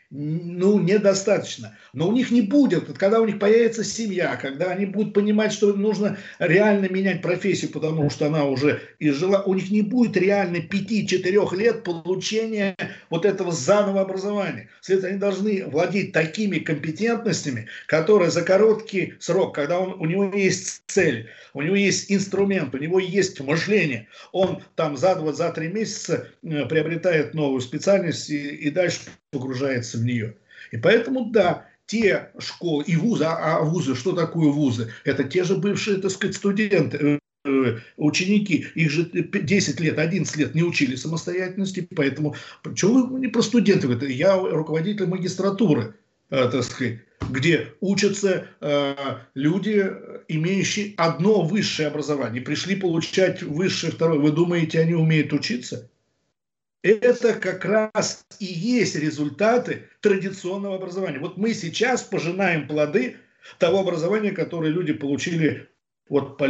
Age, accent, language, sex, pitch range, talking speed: 50-69, native, Russian, male, 150-200 Hz, 140 wpm